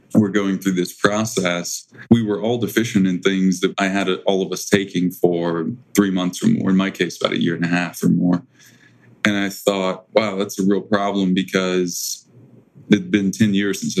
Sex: male